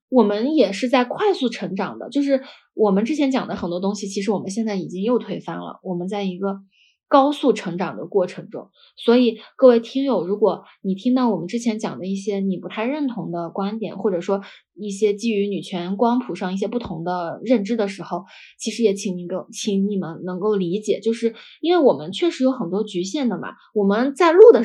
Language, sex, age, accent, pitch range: Chinese, female, 20-39, native, 195-245 Hz